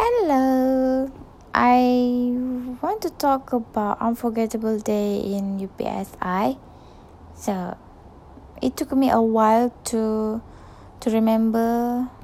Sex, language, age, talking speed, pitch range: female, English, 10-29, 95 wpm, 190-225 Hz